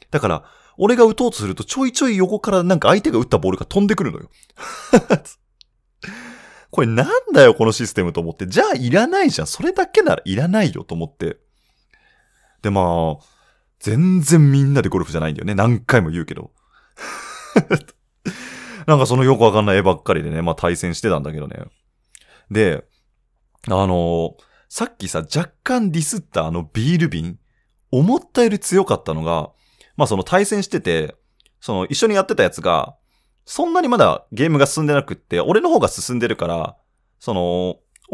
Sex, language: male, Japanese